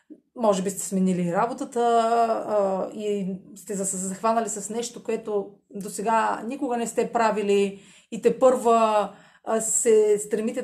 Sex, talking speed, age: female, 140 wpm, 30-49